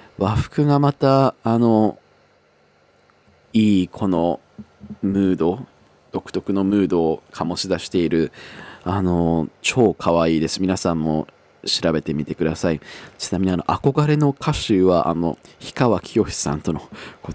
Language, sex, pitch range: Japanese, male, 85-120 Hz